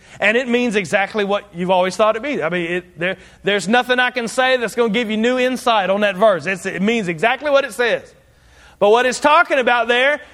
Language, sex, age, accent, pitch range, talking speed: English, male, 40-59, American, 205-275 Hz, 245 wpm